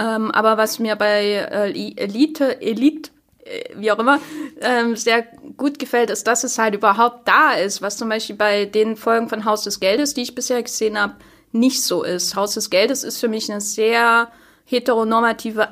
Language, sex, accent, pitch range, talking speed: German, female, German, 210-240 Hz, 190 wpm